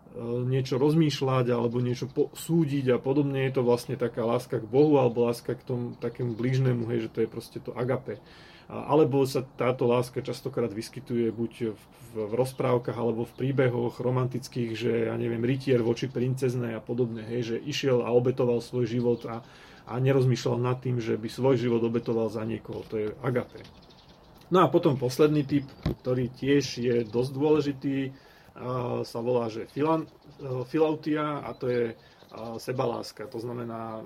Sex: male